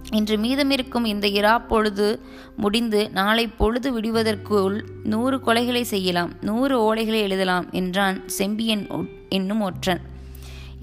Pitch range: 190-225 Hz